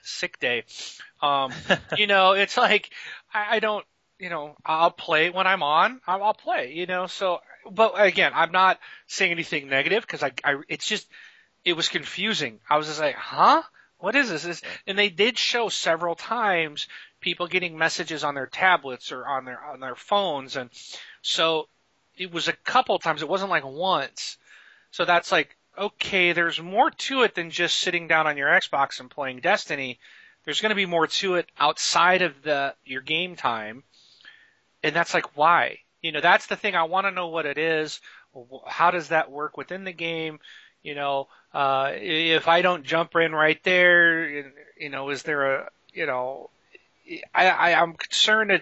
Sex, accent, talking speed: male, American, 185 wpm